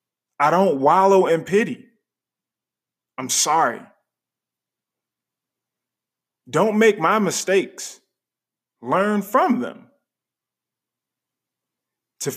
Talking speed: 75 wpm